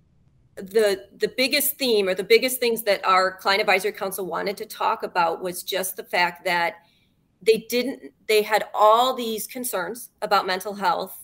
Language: English